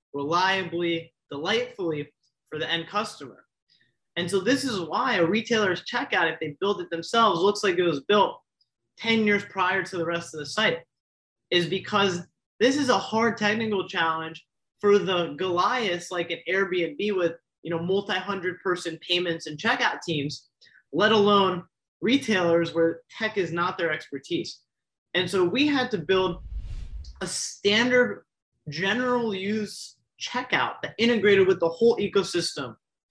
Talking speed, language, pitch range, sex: 150 wpm, English, 165-210 Hz, male